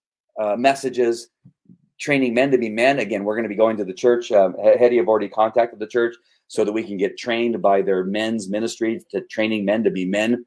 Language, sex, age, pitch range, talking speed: English, male, 30-49, 105-130 Hz, 230 wpm